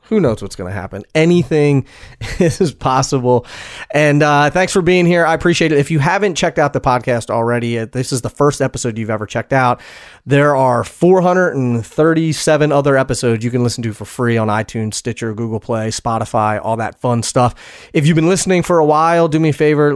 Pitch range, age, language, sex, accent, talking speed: 115-150 Hz, 30-49, English, male, American, 200 wpm